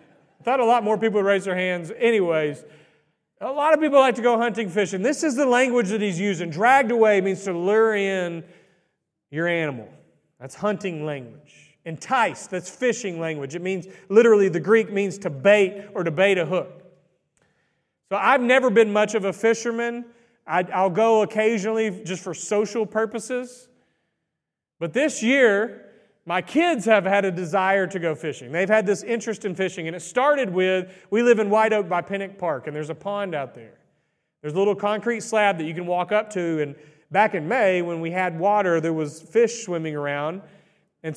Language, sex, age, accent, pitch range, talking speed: English, male, 40-59, American, 165-220 Hz, 190 wpm